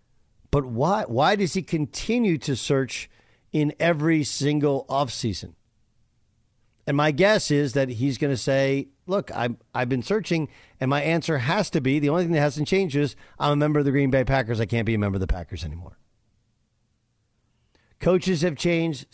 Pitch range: 115-155 Hz